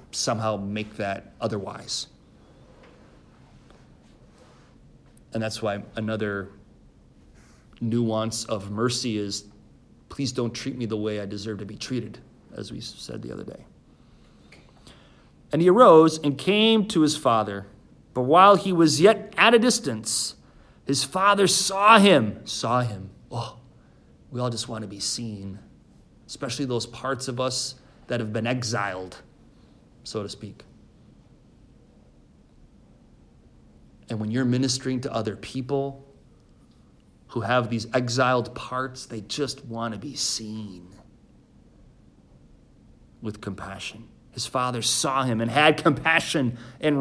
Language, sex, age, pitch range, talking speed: English, male, 30-49, 110-155 Hz, 125 wpm